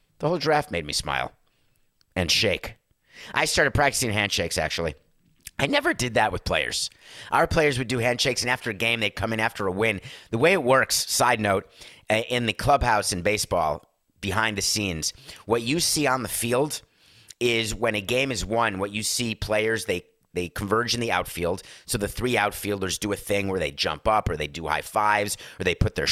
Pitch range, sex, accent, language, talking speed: 100-125 Hz, male, American, English, 205 wpm